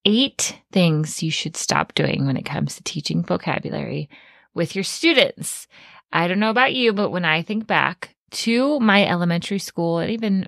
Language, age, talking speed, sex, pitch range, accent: English, 20-39, 180 wpm, female, 155-210 Hz, American